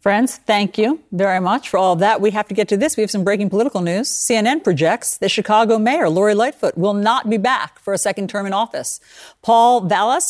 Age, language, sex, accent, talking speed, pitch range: 50-69, English, female, American, 225 wpm, 180-225 Hz